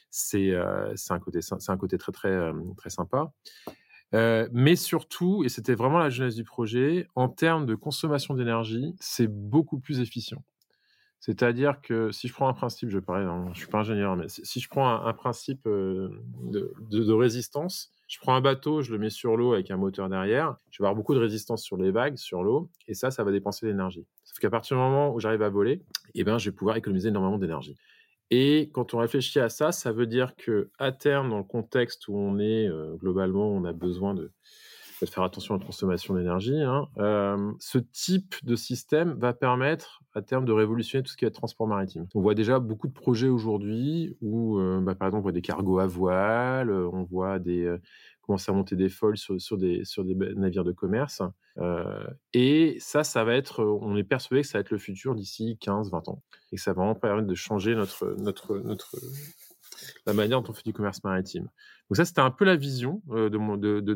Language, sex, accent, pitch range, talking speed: French, male, French, 100-130 Hz, 220 wpm